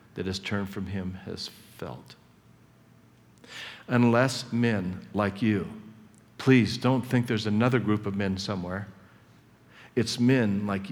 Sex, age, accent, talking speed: male, 50-69, American, 125 wpm